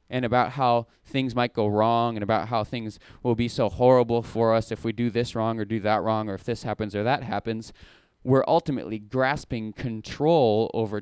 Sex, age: male, 20-39